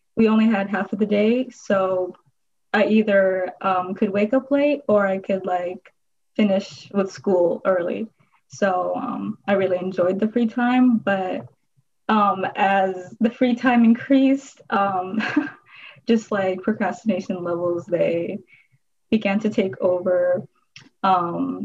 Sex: female